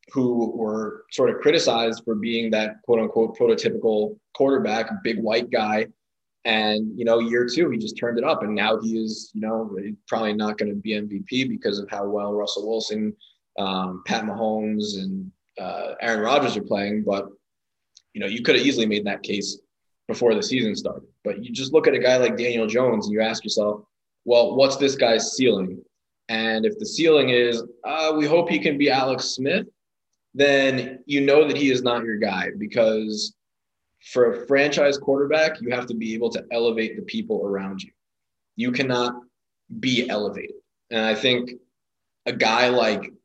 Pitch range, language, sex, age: 105-130 Hz, English, male, 20-39